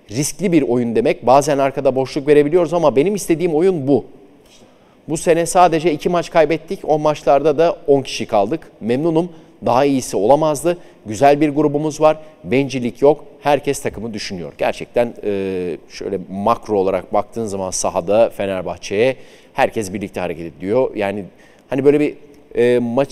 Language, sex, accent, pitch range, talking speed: Turkish, male, native, 110-140 Hz, 145 wpm